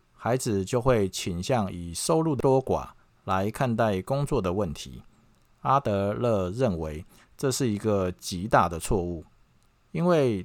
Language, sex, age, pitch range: Chinese, male, 50-69, 90-125 Hz